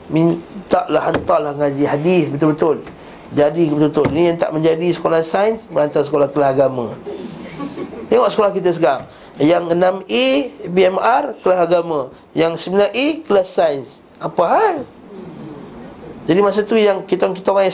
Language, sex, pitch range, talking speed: Malay, male, 155-210 Hz, 140 wpm